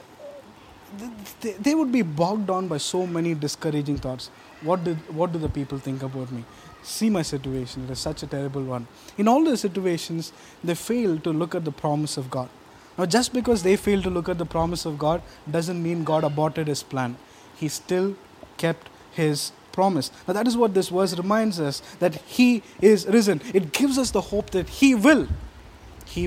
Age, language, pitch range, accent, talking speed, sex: 20-39, English, 150-200 Hz, Indian, 195 wpm, male